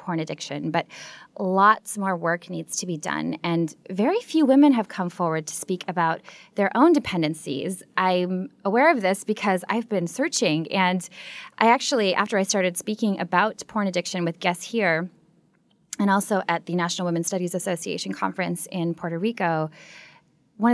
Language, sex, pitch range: English, female, 170-210 Hz